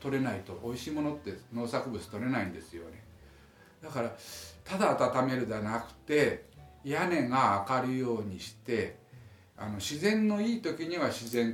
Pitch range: 100-135 Hz